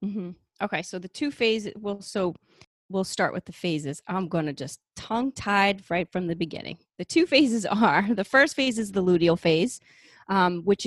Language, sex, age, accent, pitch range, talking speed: English, female, 30-49, American, 170-210 Hz, 195 wpm